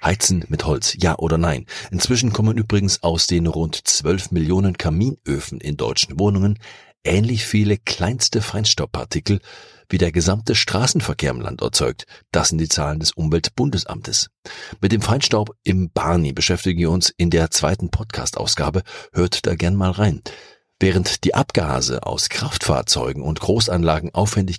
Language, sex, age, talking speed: German, male, 50-69, 145 wpm